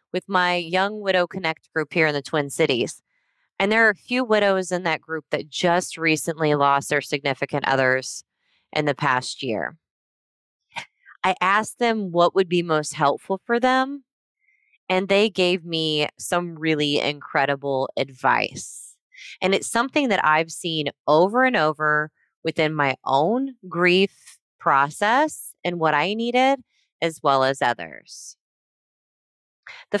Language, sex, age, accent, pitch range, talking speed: English, female, 20-39, American, 150-195 Hz, 145 wpm